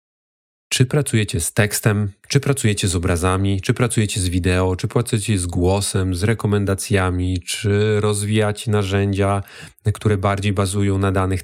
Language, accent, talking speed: Polish, native, 135 wpm